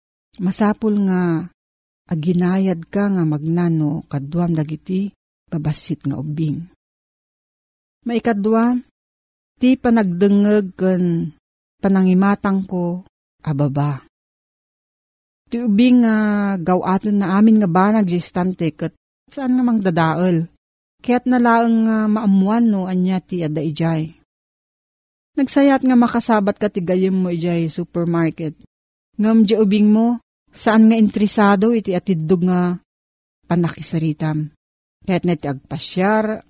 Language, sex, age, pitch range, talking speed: Filipino, female, 40-59, 160-215 Hz, 100 wpm